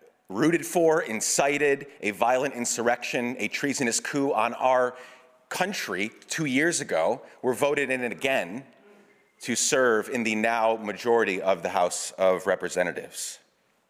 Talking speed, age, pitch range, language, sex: 130 wpm, 30-49, 105-135 Hz, English, male